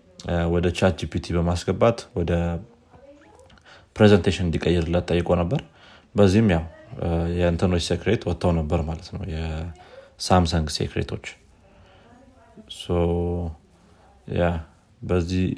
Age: 30-49